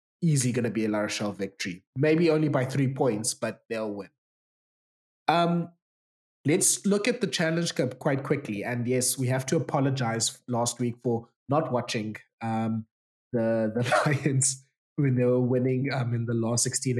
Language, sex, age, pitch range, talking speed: English, male, 20-39, 115-140 Hz, 165 wpm